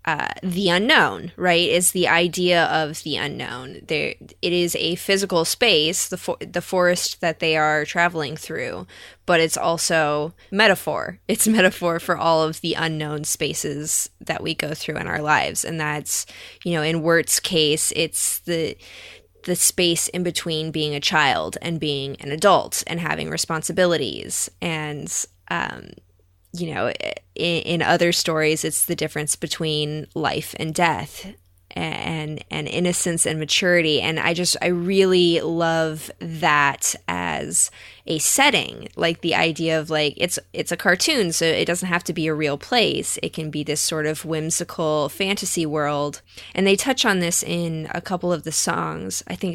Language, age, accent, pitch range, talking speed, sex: English, 10-29, American, 155-175 Hz, 165 wpm, female